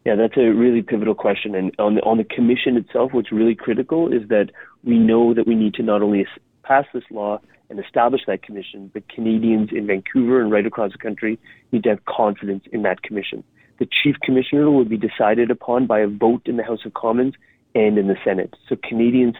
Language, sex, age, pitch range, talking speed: English, male, 30-49, 105-120 Hz, 215 wpm